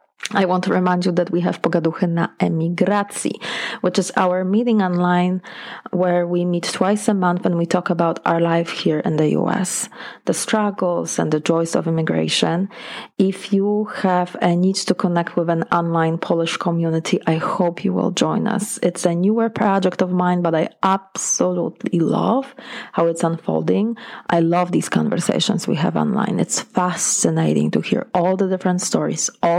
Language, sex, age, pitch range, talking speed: English, female, 30-49, 170-200 Hz, 175 wpm